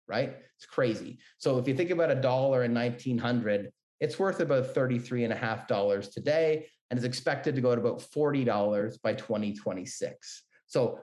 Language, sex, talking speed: English, male, 185 wpm